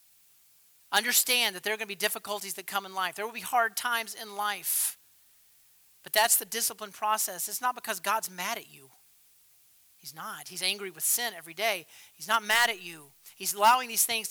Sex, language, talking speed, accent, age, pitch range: male, English, 200 wpm, American, 40-59, 160-225 Hz